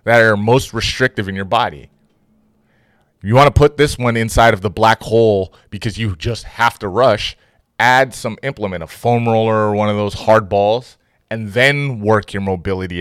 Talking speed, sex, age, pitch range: 190 wpm, male, 30-49, 100-120 Hz